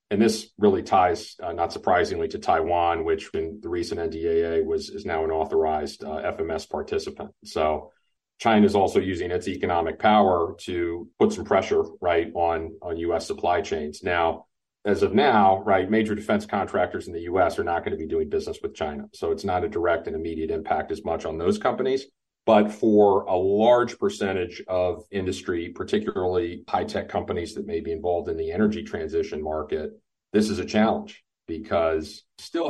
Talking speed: 180 wpm